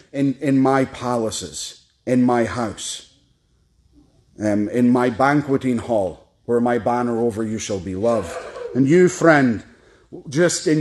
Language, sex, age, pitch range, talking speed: English, male, 30-49, 110-140 Hz, 140 wpm